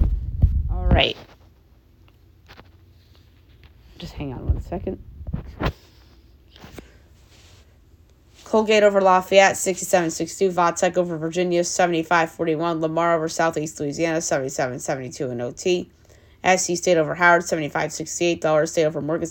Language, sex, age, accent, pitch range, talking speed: English, female, 20-39, American, 135-175 Hz, 95 wpm